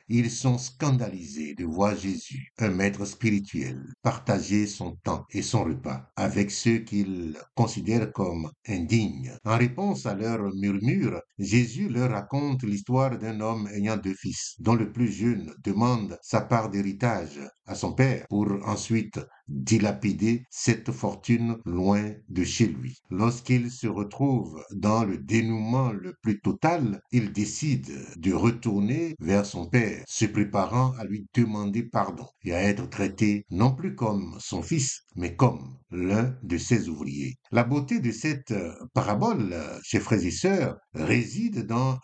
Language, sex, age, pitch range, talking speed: French, male, 60-79, 100-125 Hz, 145 wpm